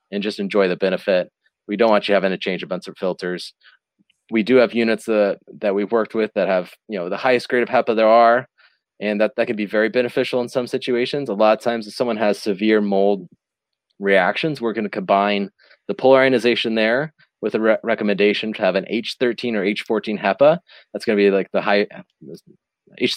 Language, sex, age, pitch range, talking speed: English, male, 30-49, 100-125 Hz, 205 wpm